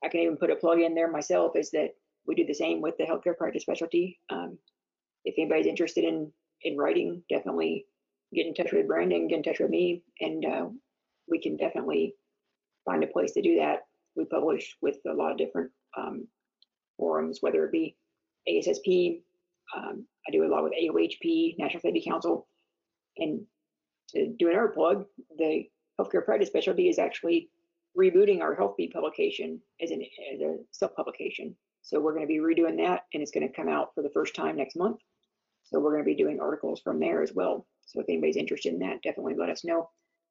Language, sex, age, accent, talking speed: English, female, 40-59, American, 195 wpm